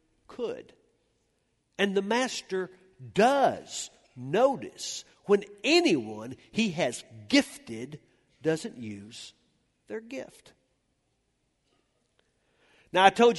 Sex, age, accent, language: male, 50-69, American, English